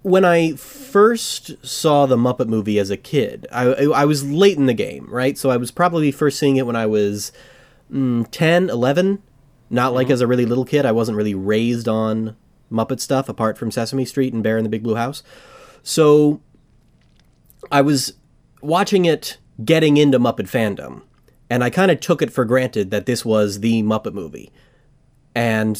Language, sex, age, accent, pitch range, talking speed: English, male, 30-49, American, 110-140 Hz, 185 wpm